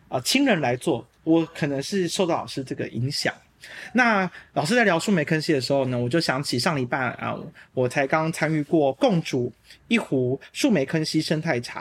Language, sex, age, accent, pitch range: Chinese, male, 30-49, native, 145-215 Hz